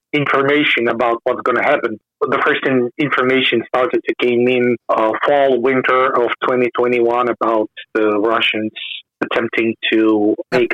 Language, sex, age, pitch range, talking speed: English, male, 30-49, 120-140 Hz, 140 wpm